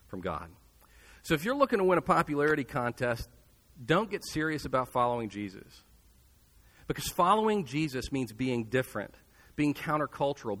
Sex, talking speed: male, 140 wpm